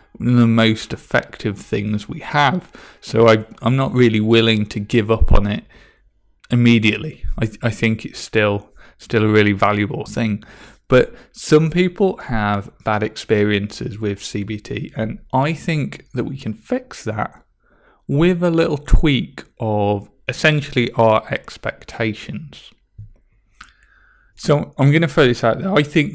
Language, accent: English, British